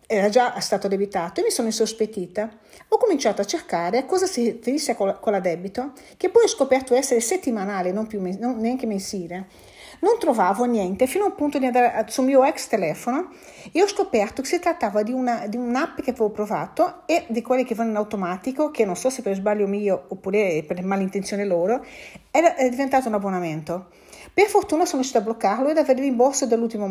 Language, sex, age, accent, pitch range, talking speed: Italian, female, 50-69, native, 200-275 Hz, 200 wpm